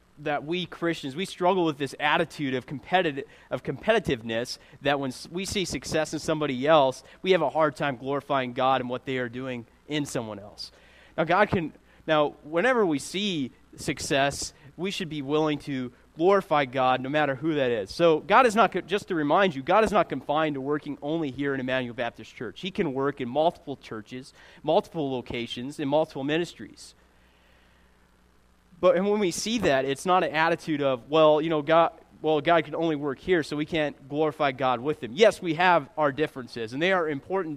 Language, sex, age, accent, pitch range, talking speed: English, male, 30-49, American, 130-165 Hz, 195 wpm